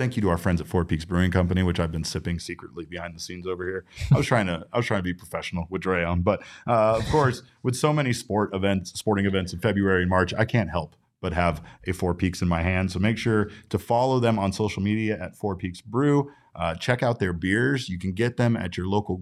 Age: 30-49